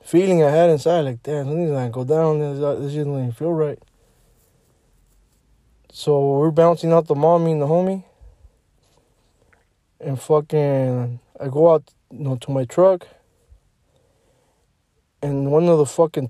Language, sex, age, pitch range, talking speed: English, male, 20-39, 125-155 Hz, 150 wpm